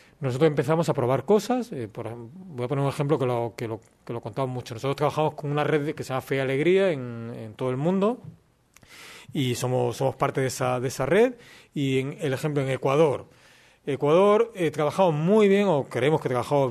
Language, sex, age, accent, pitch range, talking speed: Spanish, male, 40-59, Spanish, 125-175 Hz, 215 wpm